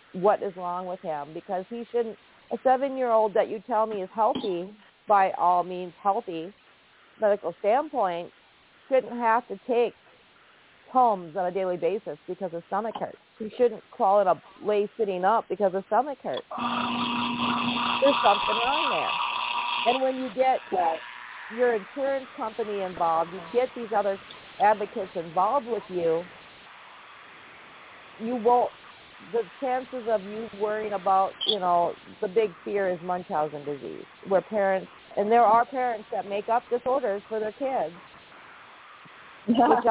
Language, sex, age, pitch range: English, female, 40-59, 185-240 Hz